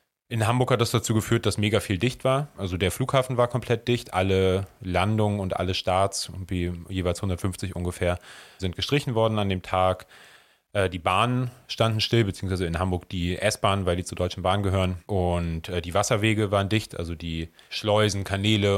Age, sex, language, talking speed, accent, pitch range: 30-49, male, German, 180 wpm, German, 90-110 Hz